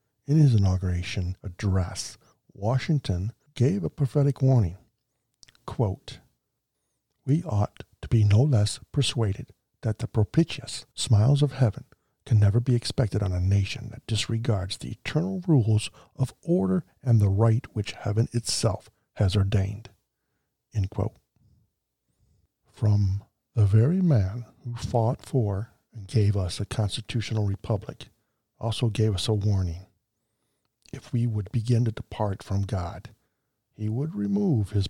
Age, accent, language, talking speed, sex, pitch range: 60-79, American, English, 130 wpm, male, 100-125 Hz